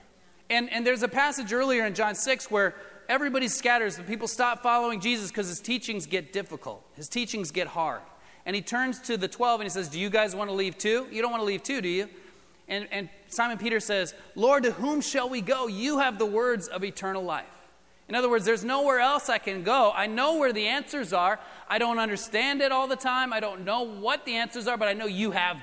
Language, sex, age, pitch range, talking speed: English, male, 30-49, 195-260 Hz, 240 wpm